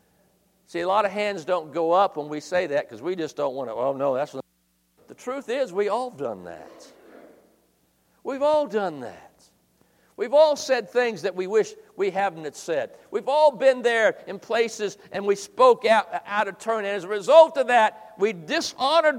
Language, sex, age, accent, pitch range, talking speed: English, male, 60-79, American, 170-260 Hz, 205 wpm